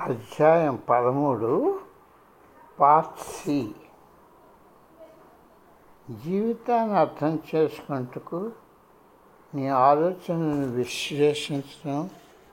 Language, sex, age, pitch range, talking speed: Telugu, male, 60-79, 140-195 Hz, 50 wpm